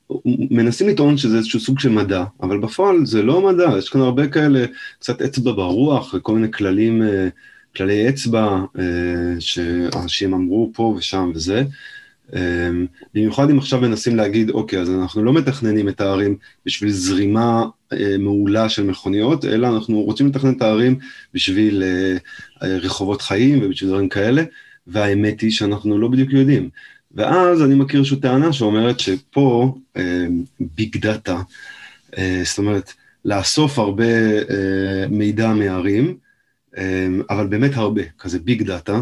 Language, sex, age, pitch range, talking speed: Hebrew, male, 20-39, 95-130 Hz, 135 wpm